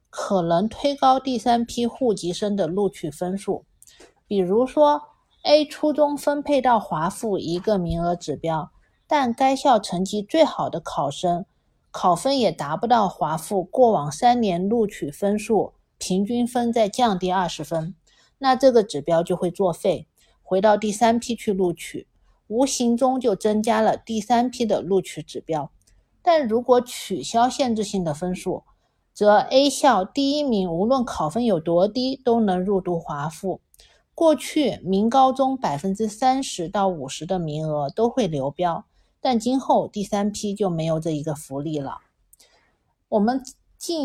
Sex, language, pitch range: female, Chinese, 175-245 Hz